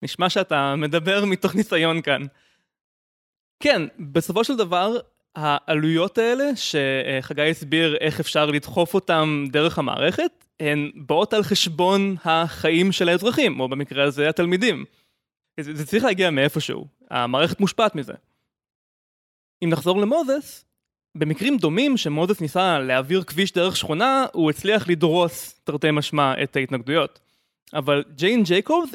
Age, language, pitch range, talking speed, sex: 20-39, Hebrew, 155-200 Hz, 125 wpm, male